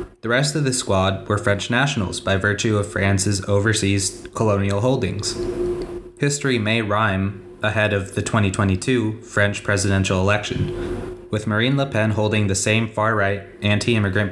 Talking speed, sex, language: 145 wpm, male, English